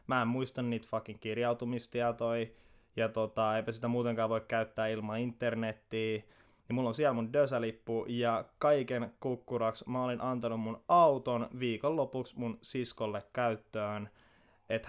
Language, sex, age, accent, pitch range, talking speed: Finnish, male, 20-39, native, 115-135 Hz, 135 wpm